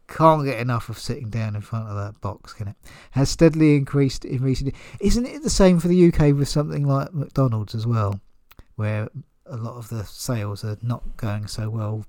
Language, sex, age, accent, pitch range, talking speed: English, male, 40-59, British, 110-145 Hz, 210 wpm